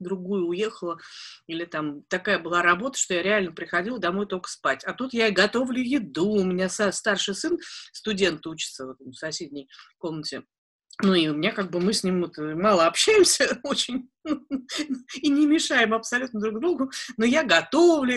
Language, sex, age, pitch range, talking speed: Russian, female, 30-49, 185-245 Hz, 160 wpm